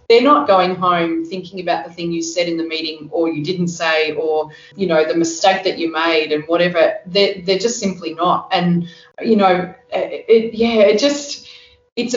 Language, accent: English, Australian